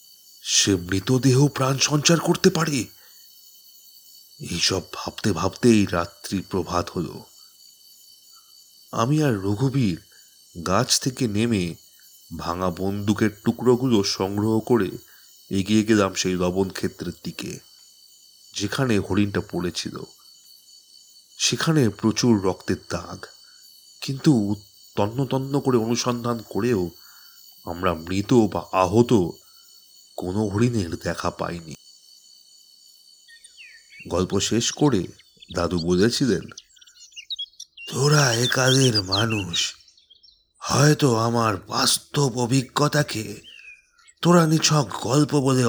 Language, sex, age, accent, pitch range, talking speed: Bengali, male, 30-49, native, 95-135 Hz, 85 wpm